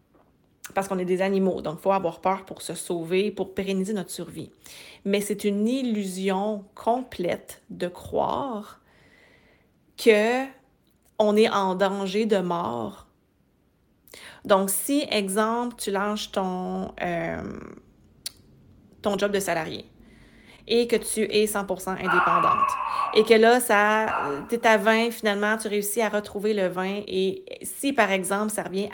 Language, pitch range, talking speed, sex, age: French, 190-220 Hz, 140 wpm, female, 30-49